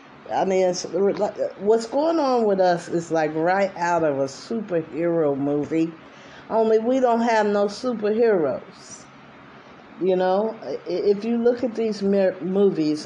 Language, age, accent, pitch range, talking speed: English, 50-69, American, 145-200 Hz, 140 wpm